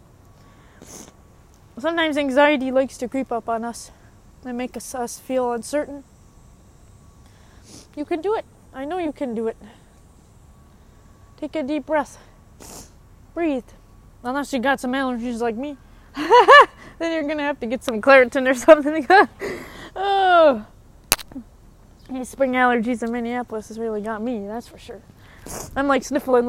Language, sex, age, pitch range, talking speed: English, female, 20-39, 240-315 Hz, 145 wpm